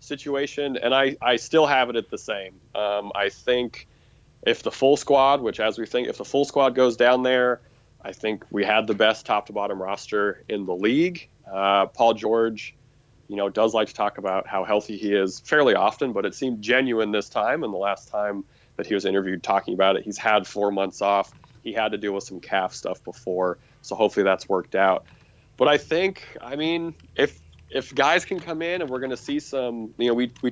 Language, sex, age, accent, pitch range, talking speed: English, male, 30-49, American, 105-135 Hz, 225 wpm